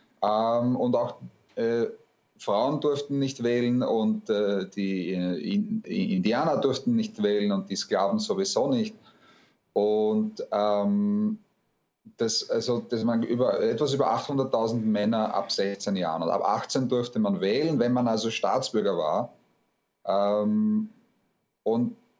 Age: 30-49